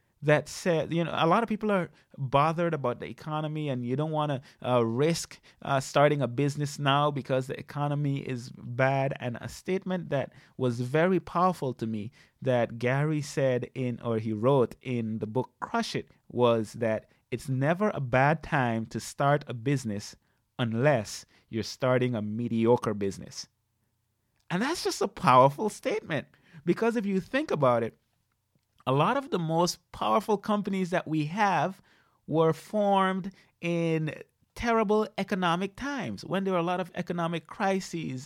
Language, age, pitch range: English, 30-49, 125-185 Hz